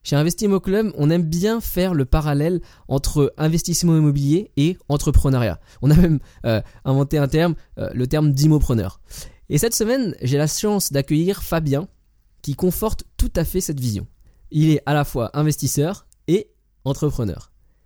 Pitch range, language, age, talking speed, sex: 135-175 Hz, French, 20-39, 160 wpm, male